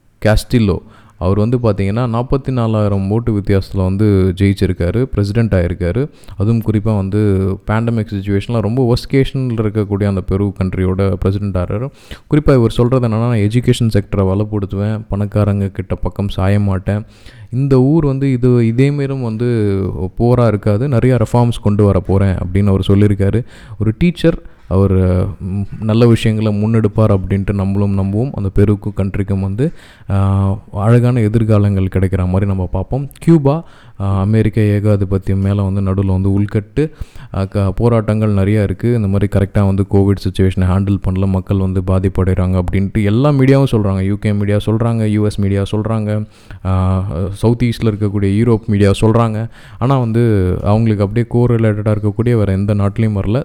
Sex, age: male, 20-39